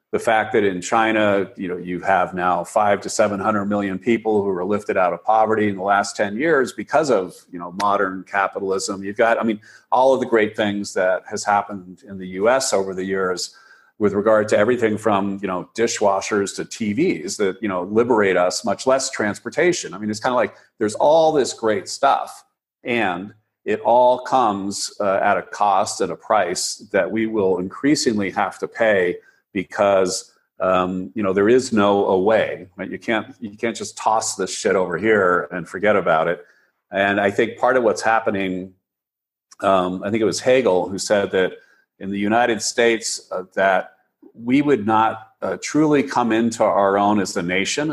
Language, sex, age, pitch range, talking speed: English, male, 40-59, 95-115 Hz, 195 wpm